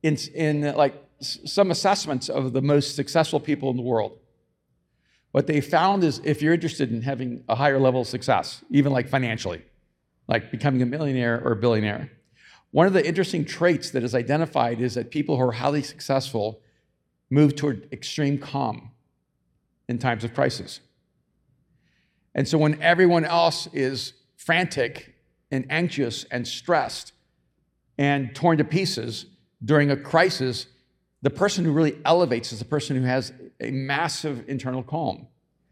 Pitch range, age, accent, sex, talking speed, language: 125-160 Hz, 50-69, American, male, 160 wpm, English